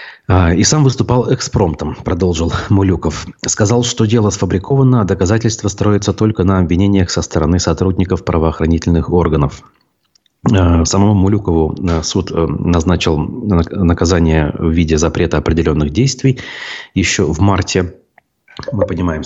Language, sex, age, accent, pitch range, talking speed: Russian, male, 30-49, native, 75-95 Hz, 110 wpm